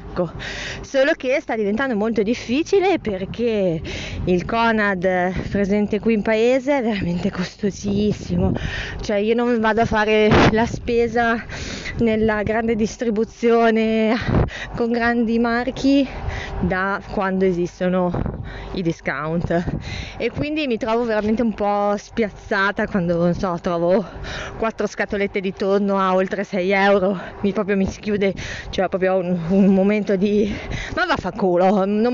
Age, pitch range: 20-39, 190-230 Hz